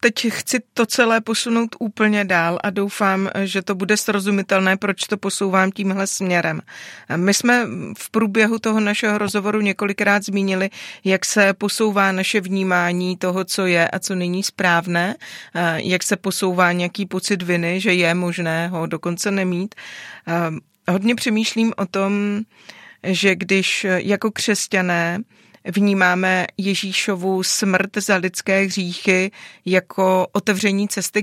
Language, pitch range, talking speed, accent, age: Czech, 180-210 Hz, 130 wpm, native, 30-49